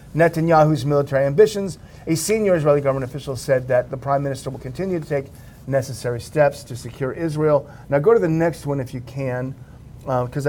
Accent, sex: American, male